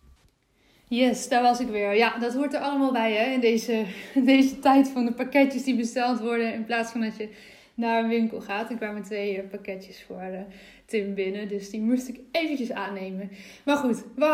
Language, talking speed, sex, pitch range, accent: Dutch, 200 wpm, female, 215-255 Hz, Dutch